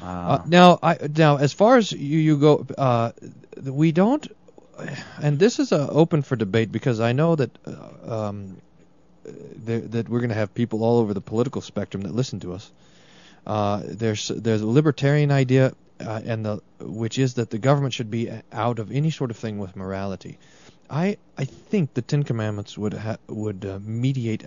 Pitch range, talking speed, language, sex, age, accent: 105-135 Hz, 190 wpm, English, male, 40-59, American